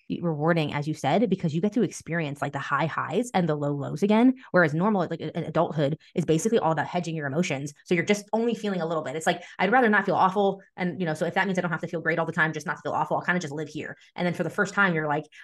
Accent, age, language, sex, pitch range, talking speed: American, 20-39, English, female, 160-200 Hz, 310 wpm